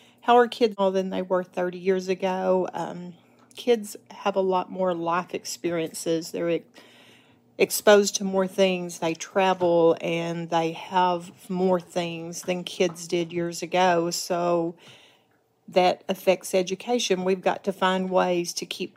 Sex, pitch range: female, 170-190 Hz